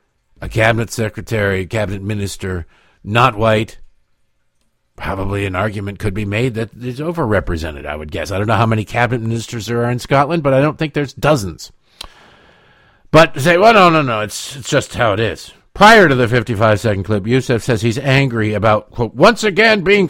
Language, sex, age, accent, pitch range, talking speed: English, male, 50-69, American, 105-165 Hz, 190 wpm